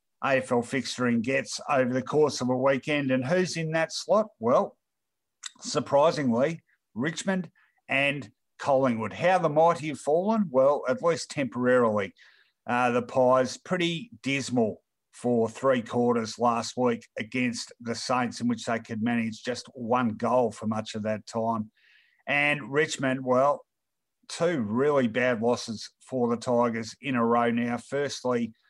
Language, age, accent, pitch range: English, 50-69, Australian, 120-140 Hz